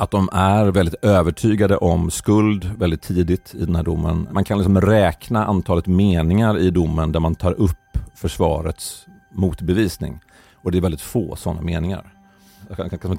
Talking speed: 165 wpm